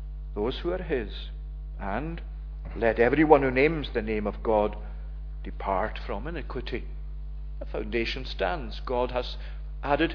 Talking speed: 130 wpm